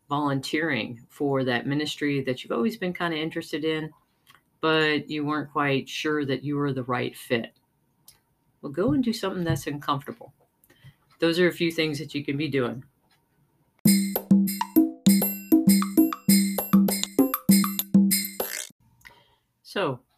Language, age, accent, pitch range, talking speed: English, 40-59, American, 130-165 Hz, 120 wpm